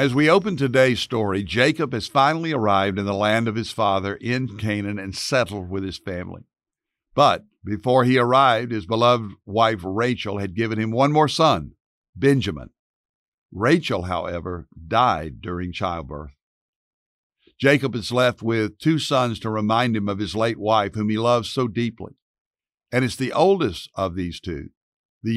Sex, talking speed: male, 160 wpm